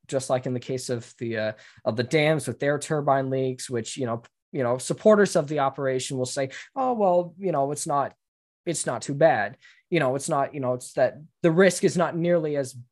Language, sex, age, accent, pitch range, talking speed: English, male, 20-39, American, 115-140 Hz, 230 wpm